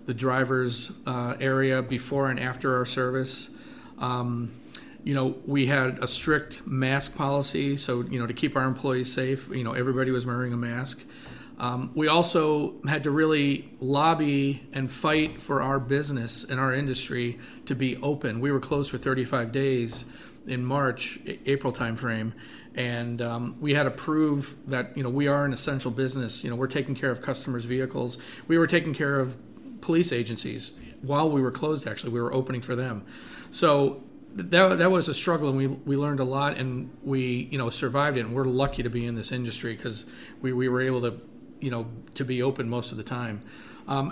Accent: American